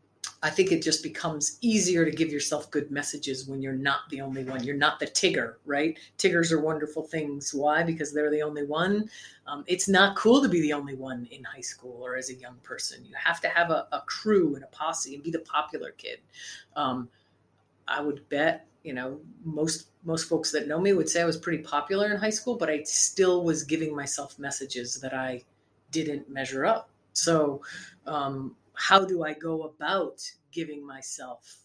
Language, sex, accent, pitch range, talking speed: English, female, American, 140-170 Hz, 200 wpm